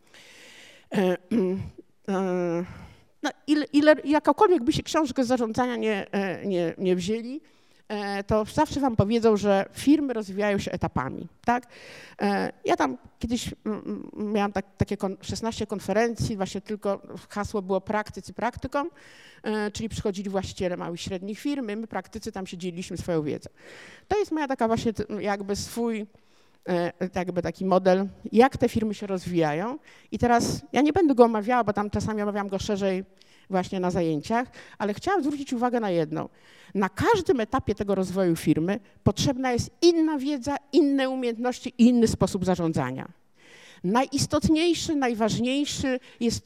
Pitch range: 195-260 Hz